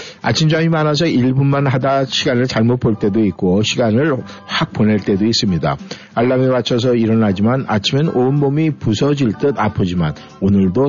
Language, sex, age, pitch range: Korean, male, 50-69, 100-140 Hz